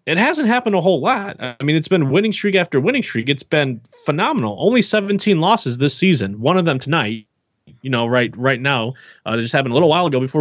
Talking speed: 235 wpm